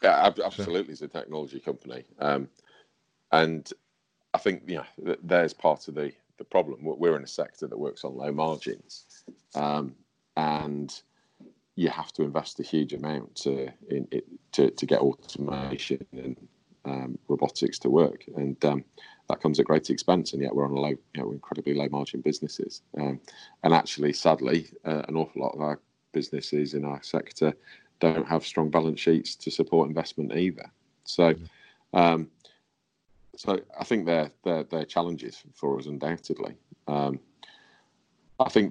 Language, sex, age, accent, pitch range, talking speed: English, male, 40-59, British, 70-80 Hz, 165 wpm